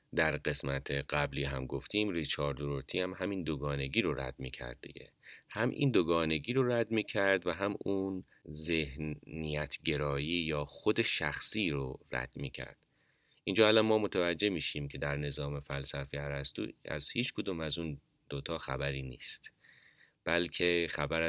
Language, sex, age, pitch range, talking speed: Persian, male, 30-49, 70-90 Hz, 140 wpm